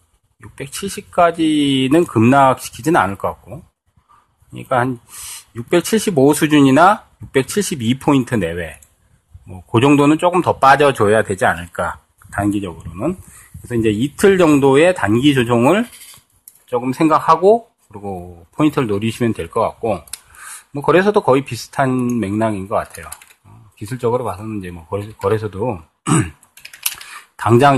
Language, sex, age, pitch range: Korean, male, 30-49, 100-140 Hz